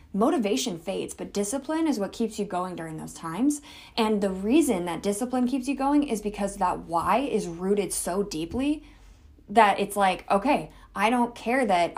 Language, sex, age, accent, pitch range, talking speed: English, female, 20-39, American, 170-225 Hz, 180 wpm